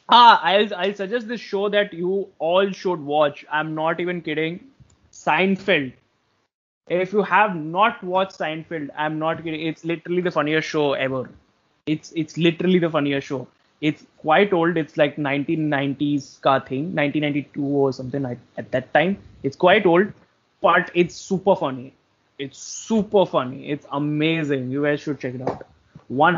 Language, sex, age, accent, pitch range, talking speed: English, male, 20-39, Indian, 140-185 Hz, 160 wpm